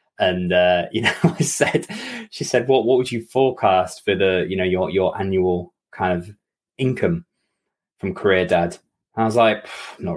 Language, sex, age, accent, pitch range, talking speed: English, male, 20-39, British, 105-150 Hz, 190 wpm